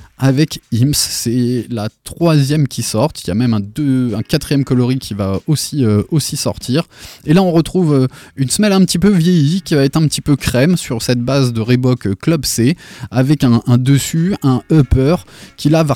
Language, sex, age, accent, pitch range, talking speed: French, male, 20-39, French, 110-145 Hz, 205 wpm